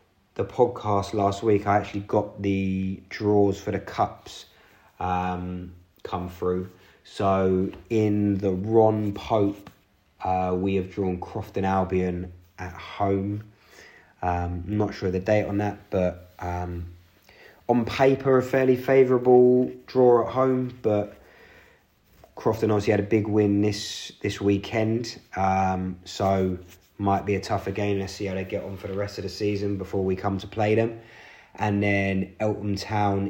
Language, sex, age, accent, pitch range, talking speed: English, male, 30-49, British, 95-105 Hz, 155 wpm